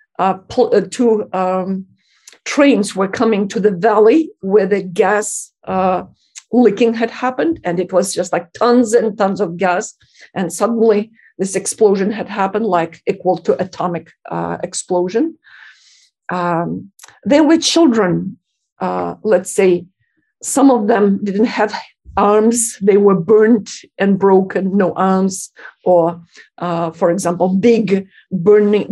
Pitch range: 180-210 Hz